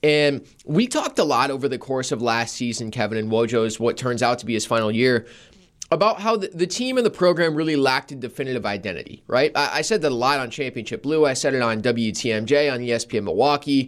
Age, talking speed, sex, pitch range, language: 20-39, 230 wpm, male, 125-155 Hz, English